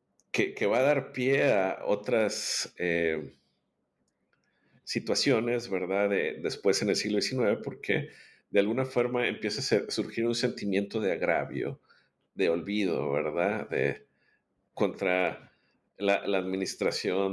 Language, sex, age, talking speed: Spanish, male, 50-69, 120 wpm